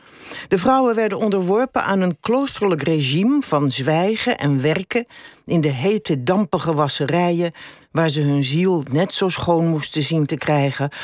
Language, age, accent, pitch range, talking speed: Dutch, 60-79, Dutch, 145-195 Hz, 150 wpm